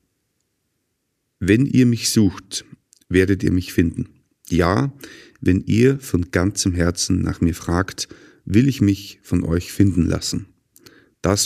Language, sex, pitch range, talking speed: German, male, 90-105 Hz, 130 wpm